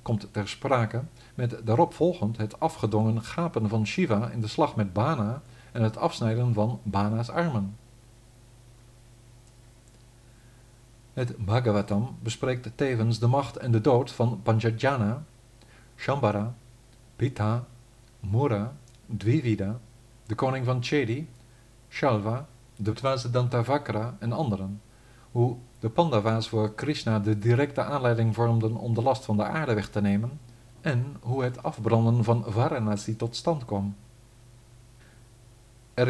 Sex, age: male, 50-69